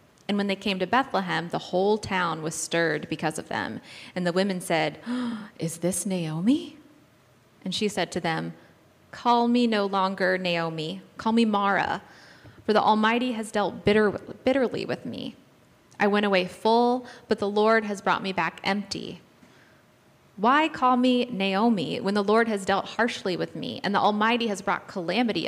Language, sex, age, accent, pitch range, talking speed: English, female, 20-39, American, 180-220 Hz, 170 wpm